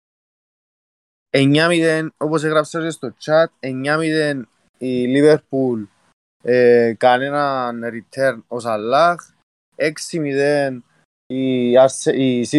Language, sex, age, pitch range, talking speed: Greek, male, 20-39, 115-145 Hz, 60 wpm